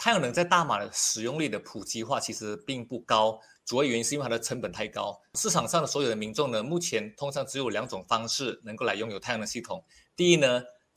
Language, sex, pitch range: Chinese, male, 115-160 Hz